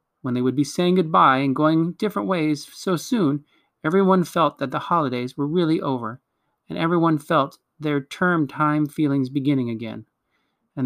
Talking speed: 160 wpm